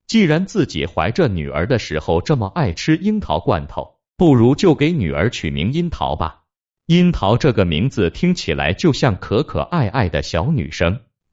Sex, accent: male, native